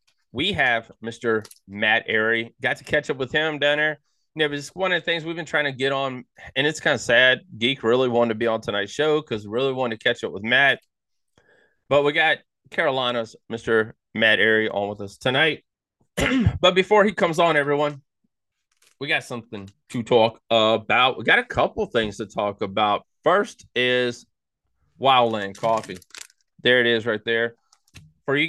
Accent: American